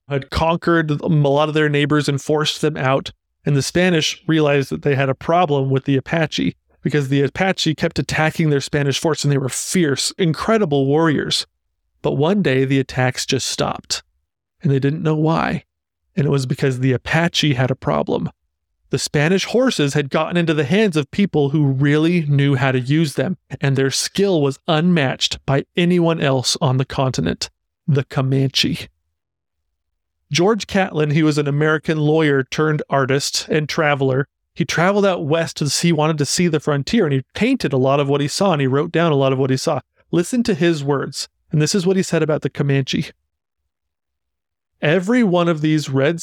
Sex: male